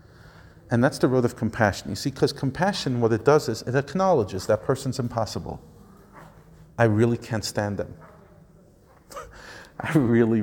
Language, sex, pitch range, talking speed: English, male, 105-140 Hz, 150 wpm